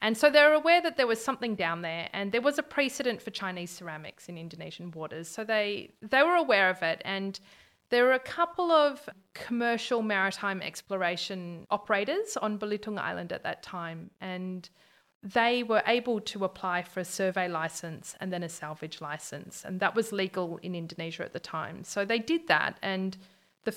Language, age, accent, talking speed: English, 40-59, Australian, 190 wpm